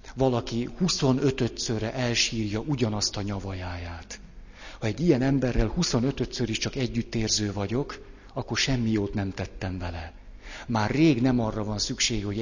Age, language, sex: 50-69, Hungarian, male